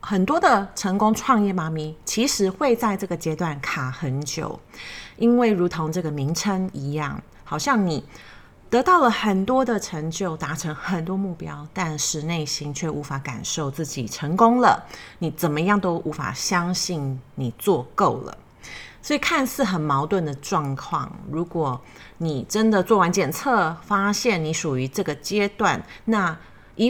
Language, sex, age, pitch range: Chinese, female, 30-49, 150-210 Hz